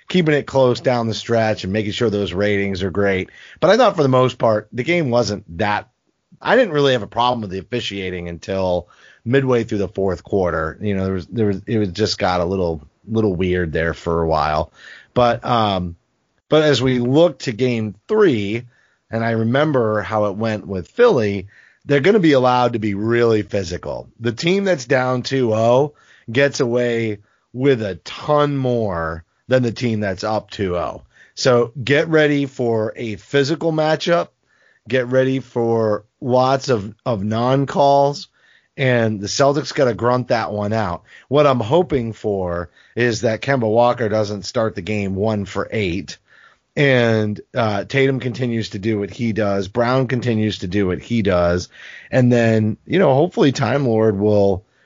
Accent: American